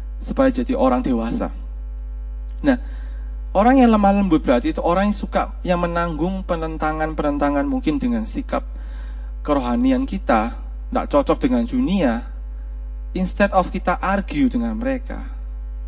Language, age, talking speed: Malay, 30-49, 125 wpm